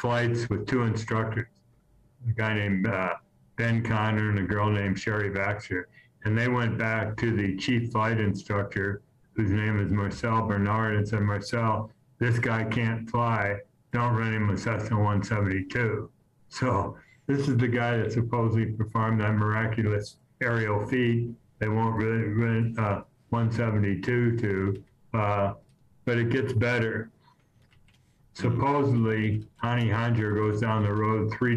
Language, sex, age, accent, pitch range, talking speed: English, male, 60-79, American, 105-120 Hz, 145 wpm